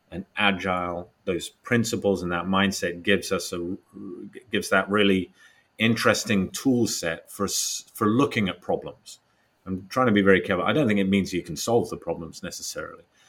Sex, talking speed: male, 170 wpm